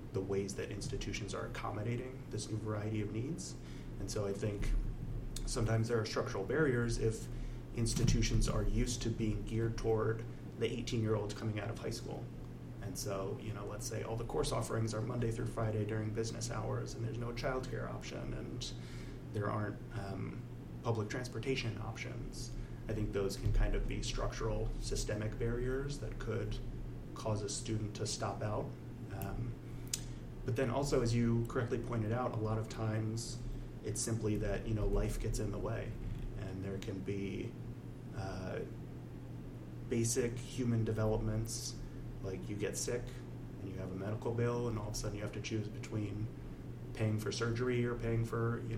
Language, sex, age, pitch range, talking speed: English, male, 30-49, 105-120 Hz, 175 wpm